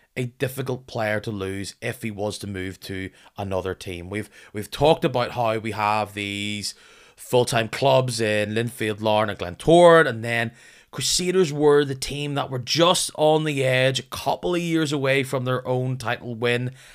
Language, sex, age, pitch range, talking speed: English, male, 20-39, 105-140 Hz, 180 wpm